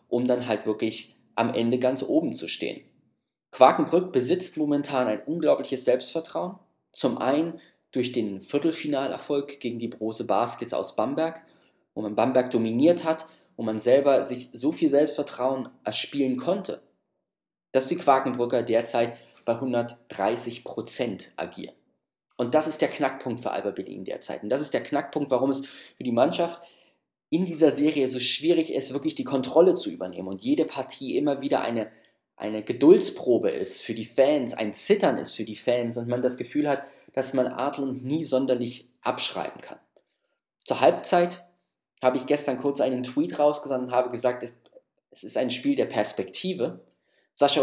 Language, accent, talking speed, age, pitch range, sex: German, German, 160 wpm, 20-39, 125-160 Hz, male